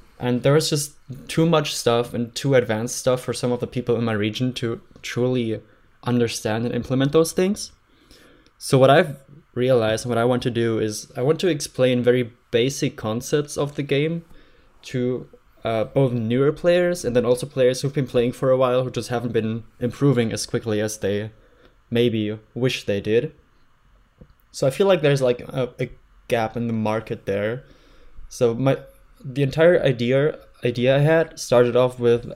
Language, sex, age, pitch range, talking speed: English, male, 20-39, 120-140 Hz, 180 wpm